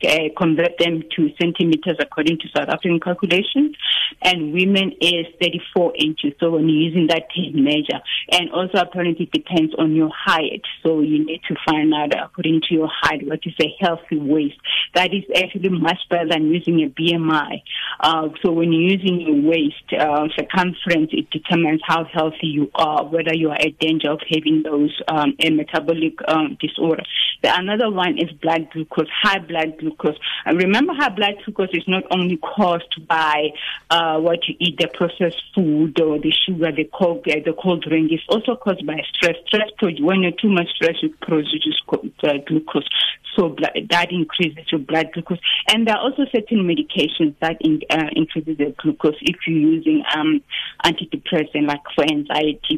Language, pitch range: English, 155-180 Hz